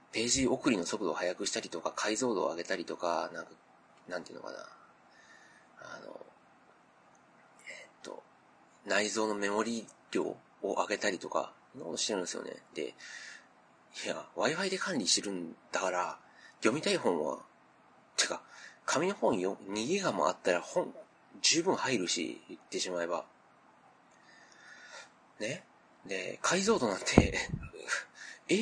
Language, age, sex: Japanese, 40-59, male